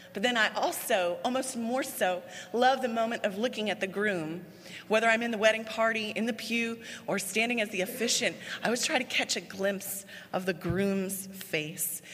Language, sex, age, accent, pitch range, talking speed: English, female, 30-49, American, 190-240 Hz, 200 wpm